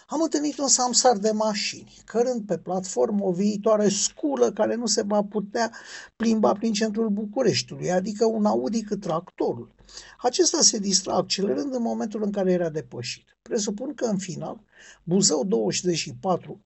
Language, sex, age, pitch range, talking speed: Romanian, male, 50-69, 170-220 Hz, 150 wpm